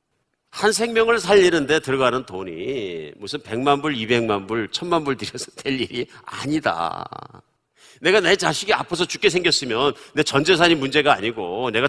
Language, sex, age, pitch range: Korean, male, 50-69, 120-180 Hz